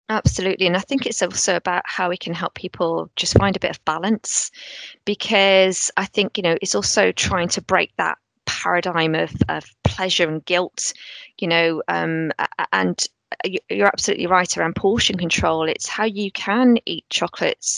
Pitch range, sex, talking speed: 165-205 Hz, female, 170 wpm